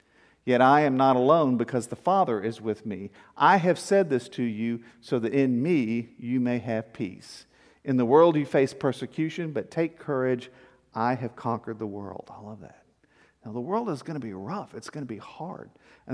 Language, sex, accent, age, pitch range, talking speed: English, male, American, 50-69, 115-150 Hz, 210 wpm